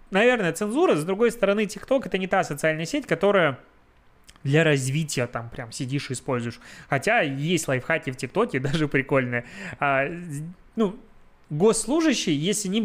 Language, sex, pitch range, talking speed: Russian, male, 135-185 Hz, 145 wpm